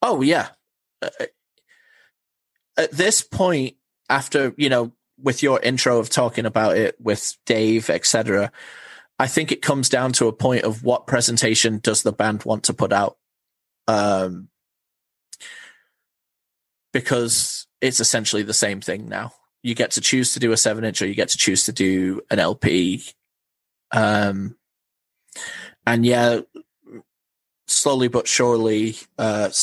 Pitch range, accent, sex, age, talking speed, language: 110-135 Hz, British, male, 20-39, 140 wpm, English